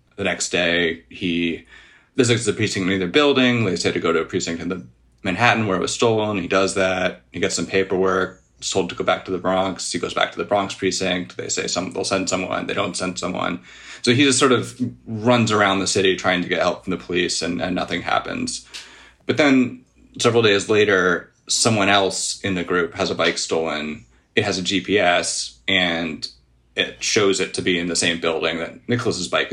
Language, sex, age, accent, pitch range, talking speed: English, male, 30-49, American, 90-110 Hz, 215 wpm